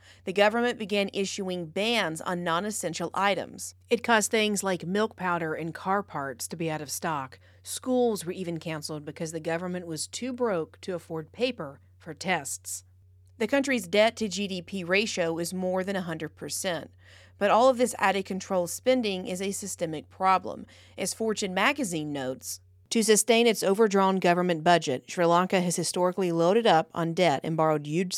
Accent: American